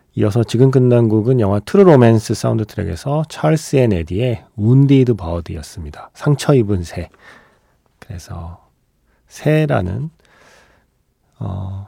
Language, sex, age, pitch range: Korean, male, 40-59, 95-140 Hz